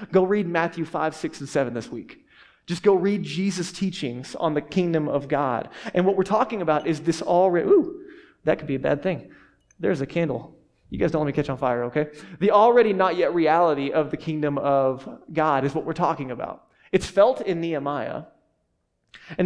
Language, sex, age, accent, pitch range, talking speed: English, male, 20-39, American, 145-185 Hz, 205 wpm